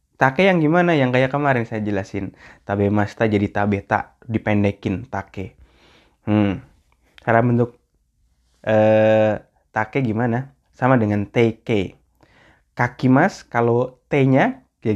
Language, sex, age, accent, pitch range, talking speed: Indonesian, male, 20-39, native, 100-135 Hz, 105 wpm